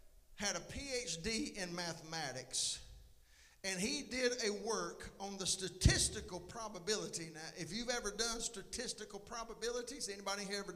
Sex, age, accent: male, 50-69, American